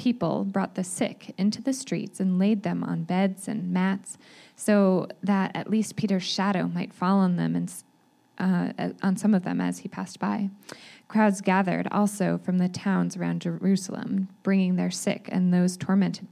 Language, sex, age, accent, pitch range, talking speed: English, female, 20-39, American, 185-210 Hz, 175 wpm